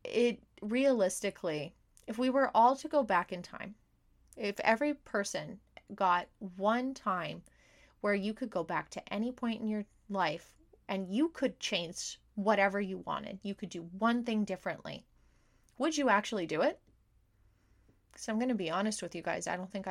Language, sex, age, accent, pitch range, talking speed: English, female, 20-39, American, 185-230 Hz, 175 wpm